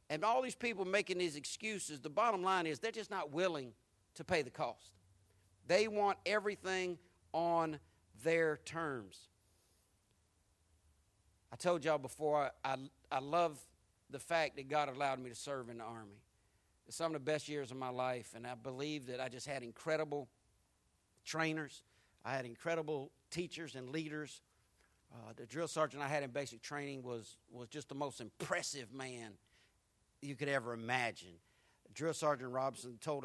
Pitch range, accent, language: 115-165 Hz, American, English